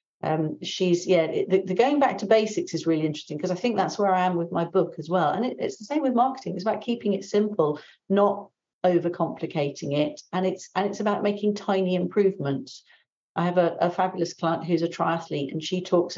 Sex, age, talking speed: female, 50-69, 215 wpm